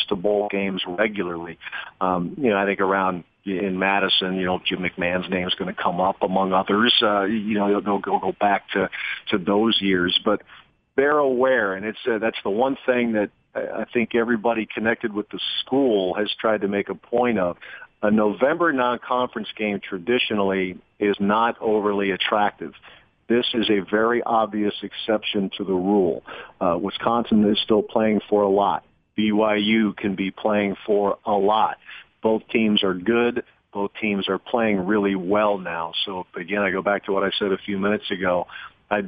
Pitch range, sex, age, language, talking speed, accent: 95-110 Hz, male, 50-69, English, 185 wpm, American